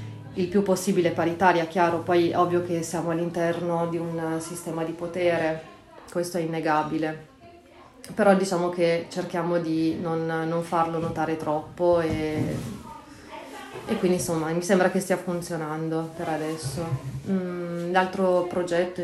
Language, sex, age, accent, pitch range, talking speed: Italian, female, 30-49, native, 160-175 Hz, 130 wpm